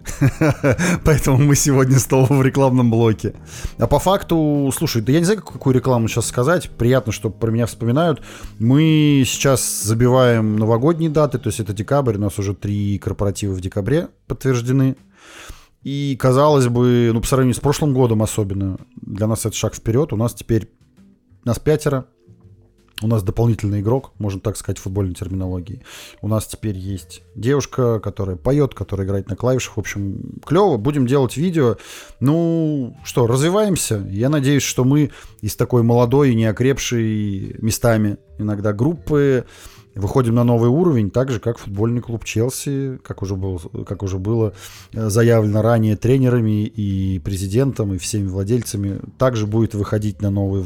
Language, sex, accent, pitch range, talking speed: Russian, male, native, 105-135 Hz, 155 wpm